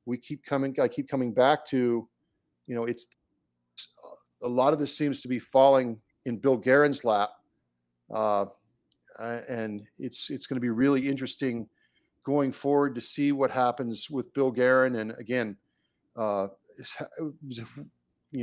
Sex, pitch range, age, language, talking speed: male, 115-130 Hz, 40-59, English, 150 wpm